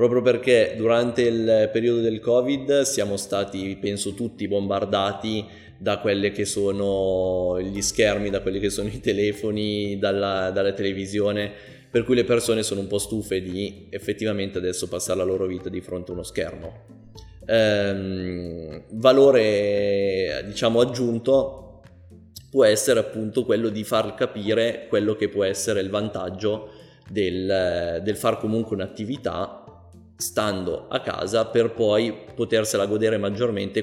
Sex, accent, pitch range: male, native, 100-115 Hz